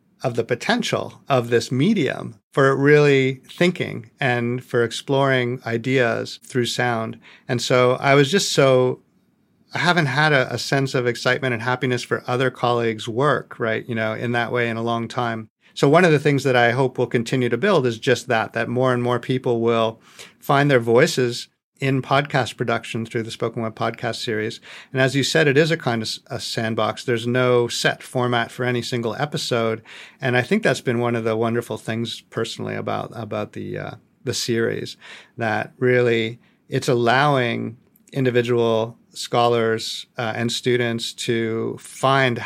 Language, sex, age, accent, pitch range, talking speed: English, male, 50-69, American, 115-130 Hz, 175 wpm